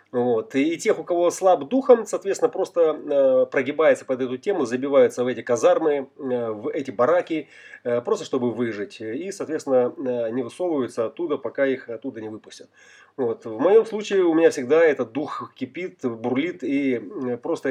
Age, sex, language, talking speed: 30-49, male, Russian, 165 wpm